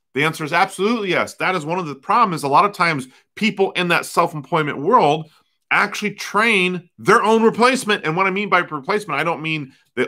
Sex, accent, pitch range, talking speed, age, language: male, American, 135-185 Hz, 210 wpm, 30-49, English